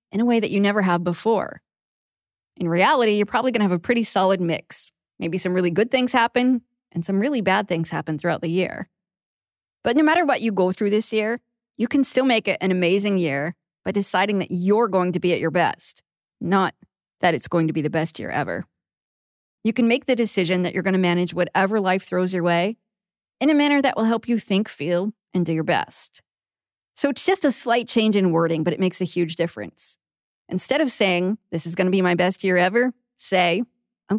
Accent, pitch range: American, 180-230 Hz